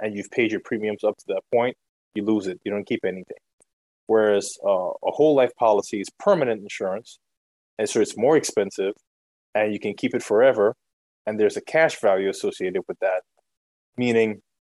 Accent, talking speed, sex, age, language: American, 185 wpm, male, 20-39, English